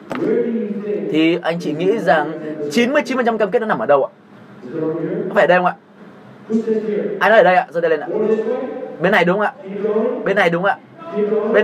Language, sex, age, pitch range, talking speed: Vietnamese, male, 20-39, 180-245 Hz, 200 wpm